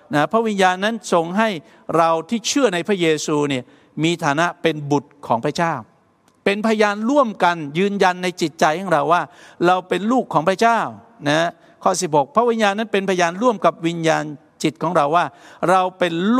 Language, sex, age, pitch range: Thai, male, 60-79, 150-195 Hz